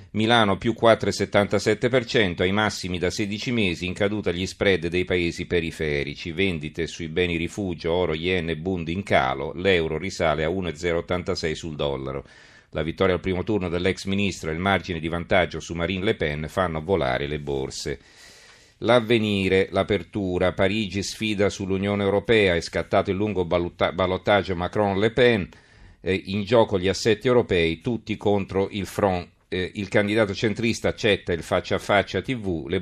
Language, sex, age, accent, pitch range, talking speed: Italian, male, 40-59, native, 85-100 Hz, 150 wpm